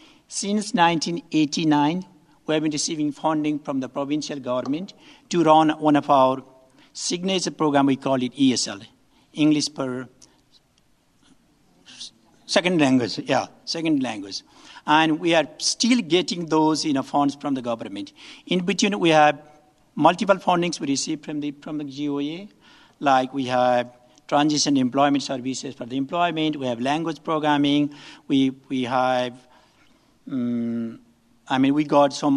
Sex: male